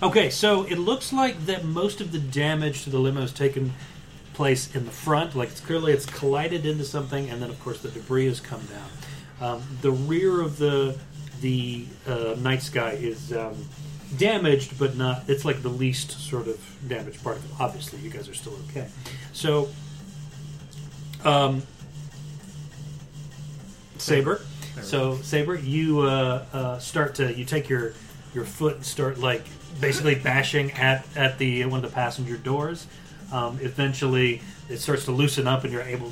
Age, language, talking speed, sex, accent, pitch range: 40-59, English, 170 wpm, male, American, 130-150 Hz